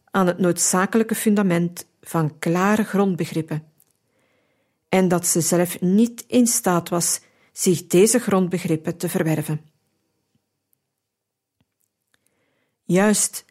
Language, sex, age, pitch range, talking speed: Dutch, female, 50-69, 170-215 Hz, 95 wpm